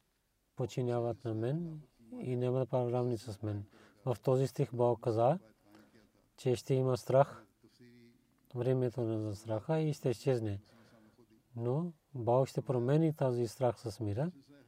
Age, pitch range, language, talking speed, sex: 40-59, 115-130 Hz, Bulgarian, 130 wpm, male